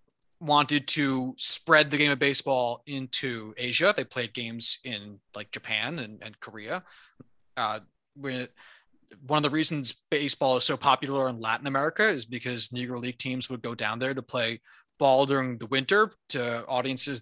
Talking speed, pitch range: 165 wpm, 125-160 Hz